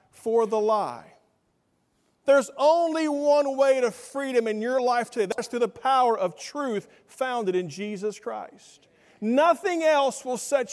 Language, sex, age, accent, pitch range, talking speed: English, male, 40-59, American, 220-285 Hz, 150 wpm